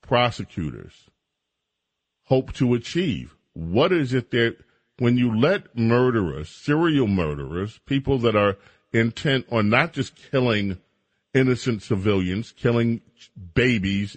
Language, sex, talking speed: English, male, 110 wpm